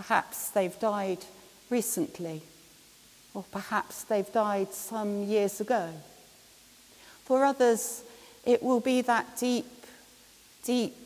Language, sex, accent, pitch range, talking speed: English, female, British, 200-255 Hz, 105 wpm